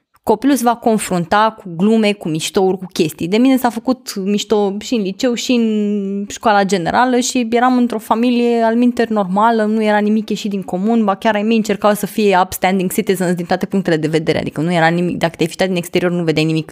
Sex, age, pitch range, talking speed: female, 20-39, 185-235 Hz, 210 wpm